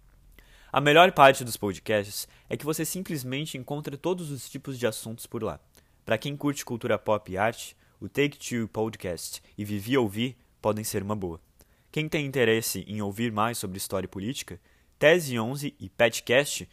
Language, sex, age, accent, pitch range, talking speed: Portuguese, male, 20-39, Brazilian, 95-140 Hz, 175 wpm